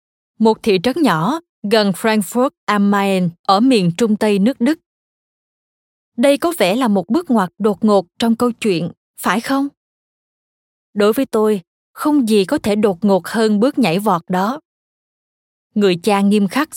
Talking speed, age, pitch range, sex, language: 165 wpm, 20-39, 195-250 Hz, female, Vietnamese